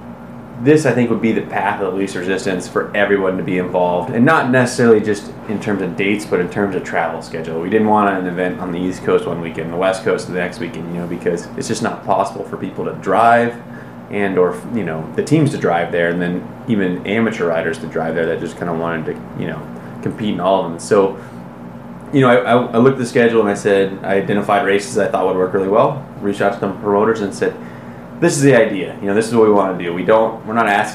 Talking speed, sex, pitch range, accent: 260 wpm, male, 85-105 Hz, American